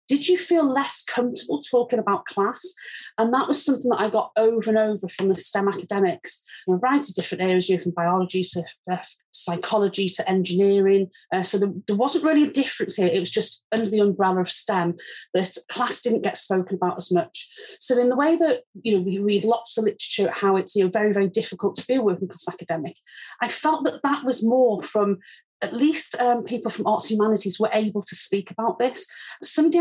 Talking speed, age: 210 wpm, 30-49